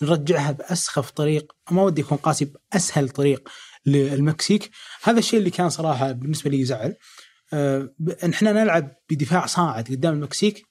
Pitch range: 145-180 Hz